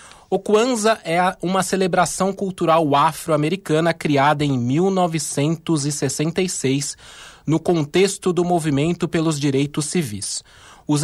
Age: 20-39